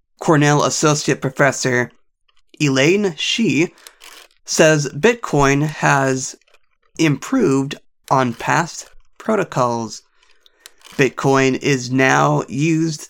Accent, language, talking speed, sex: American, English, 75 wpm, male